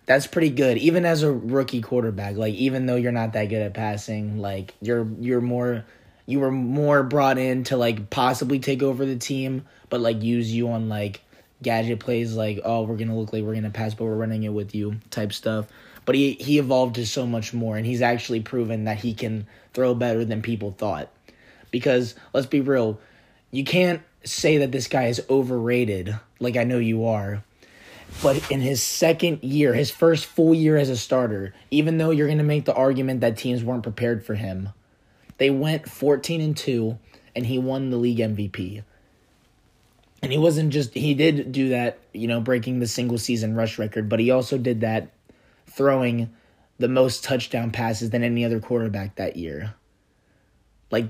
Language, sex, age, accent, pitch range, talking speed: English, male, 20-39, American, 110-135 Hz, 195 wpm